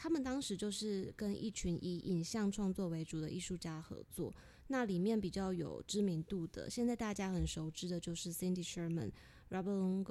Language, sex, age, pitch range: Chinese, female, 20-39, 170-210 Hz